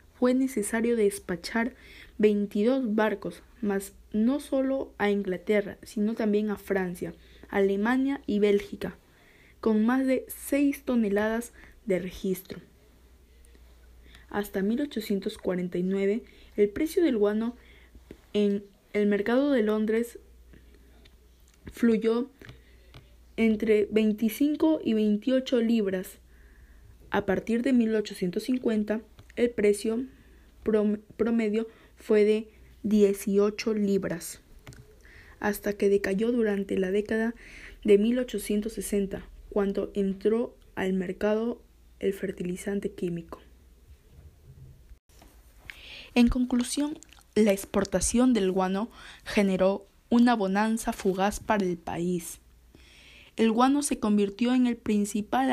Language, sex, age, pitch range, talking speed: Spanish, female, 20-39, 190-230 Hz, 95 wpm